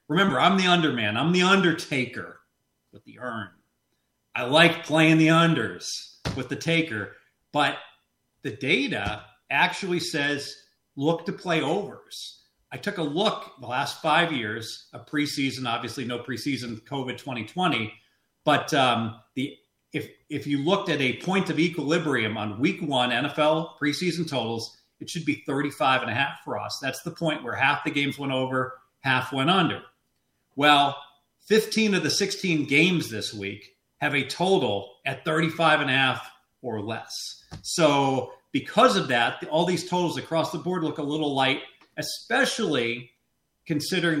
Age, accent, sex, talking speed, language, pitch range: 40-59, American, male, 155 wpm, English, 130-165 Hz